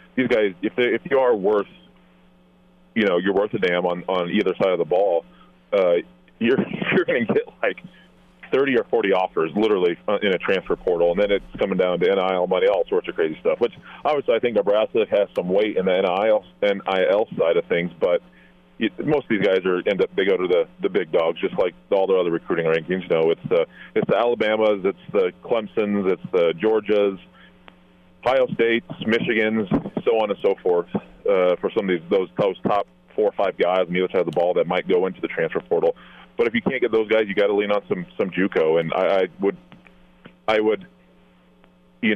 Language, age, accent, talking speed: English, 30-49, American, 225 wpm